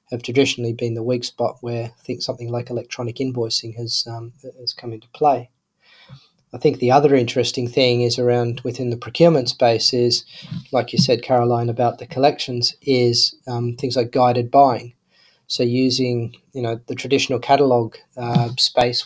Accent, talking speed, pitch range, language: Australian, 170 wpm, 120-135 Hz, English